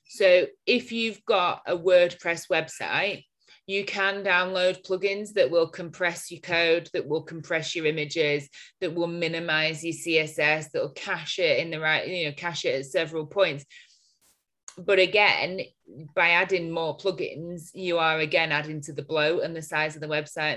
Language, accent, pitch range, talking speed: English, British, 145-170 Hz, 170 wpm